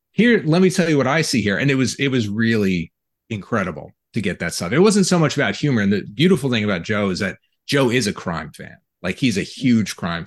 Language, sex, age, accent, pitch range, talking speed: English, male, 30-49, American, 95-125 Hz, 255 wpm